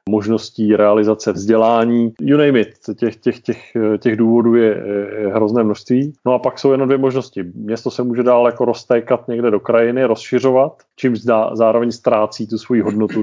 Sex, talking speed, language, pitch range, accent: male, 165 wpm, Czech, 105-115 Hz, native